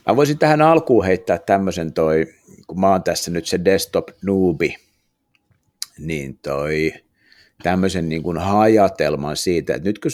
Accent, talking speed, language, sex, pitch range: native, 135 wpm, Finnish, male, 75-95 Hz